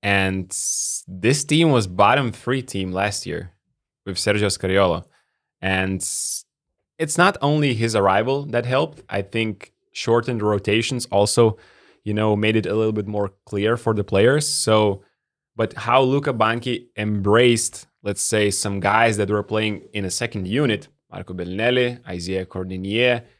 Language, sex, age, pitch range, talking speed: English, male, 20-39, 100-120 Hz, 150 wpm